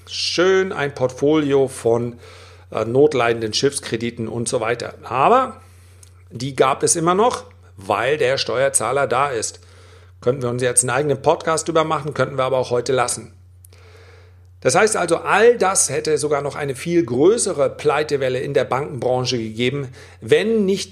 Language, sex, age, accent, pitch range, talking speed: German, male, 40-59, German, 110-150 Hz, 155 wpm